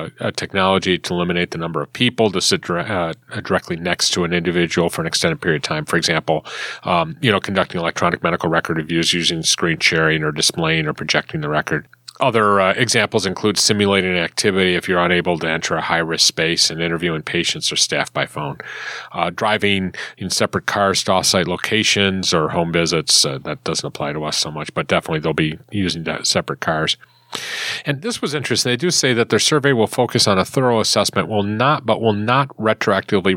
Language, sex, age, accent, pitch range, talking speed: English, male, 40-59, American, 85-105 Hz, 200 wpm